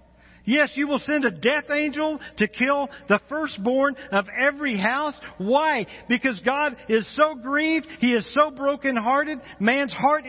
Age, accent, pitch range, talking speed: 50-69, American, 175-260 Hz, 150 wpm